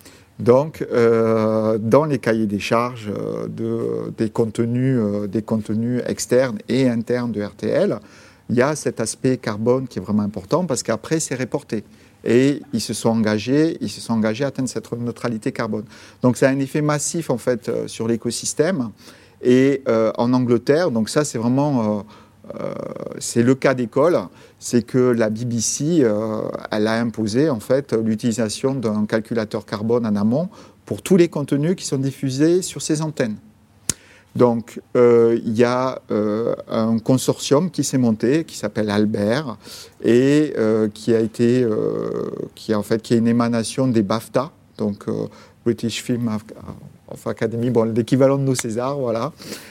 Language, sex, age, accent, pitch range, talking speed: French, male, 50-69, French, 110-130 Hz, 165 wpm